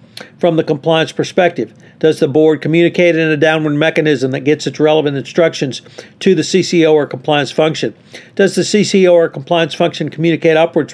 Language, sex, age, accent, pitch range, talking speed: English, male, 50-69, American, 140-170 Hz, 170 wpm